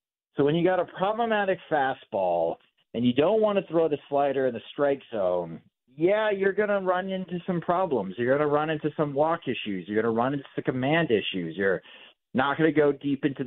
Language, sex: English, male